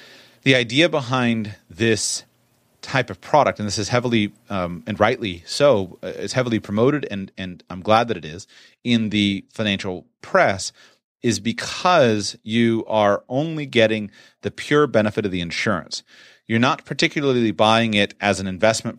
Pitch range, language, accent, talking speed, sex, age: 95-115 Hz, English, American, 155 wpm, male, 30-49